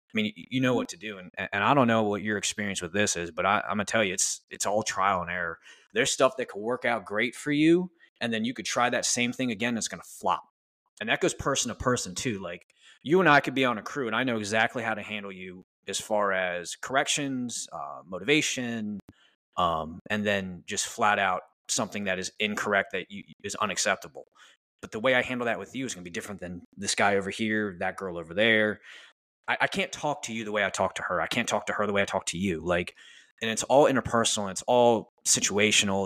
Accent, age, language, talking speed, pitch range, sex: American, 20-39, English, 250 wpm, 95-115 Hz, male